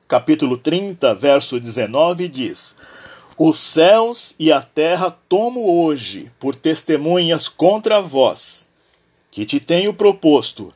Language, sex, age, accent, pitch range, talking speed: Portuguese, male, 50-69, Brazilian, 150-225 Hz, 110 wpm